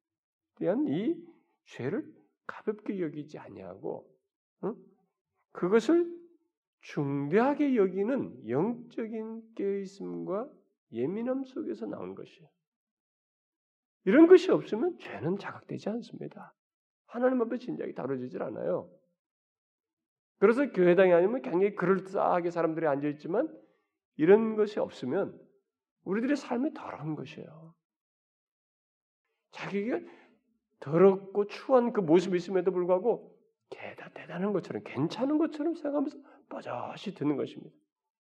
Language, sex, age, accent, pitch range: Korean, male, 40-59, native, 190-305 Hz